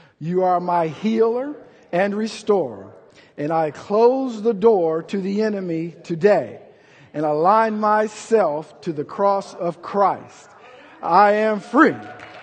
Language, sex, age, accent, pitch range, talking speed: English, male, 50-69, American, 175-230 Hz, 125 wpm